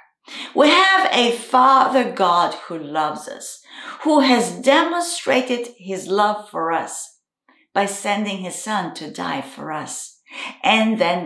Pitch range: 200-305 Hz